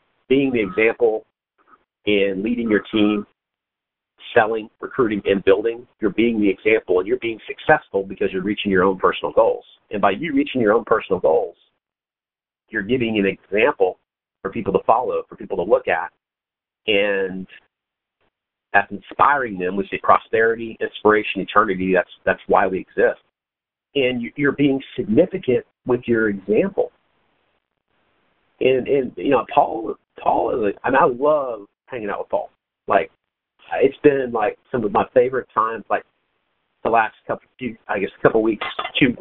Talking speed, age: 160 wpm, 50-69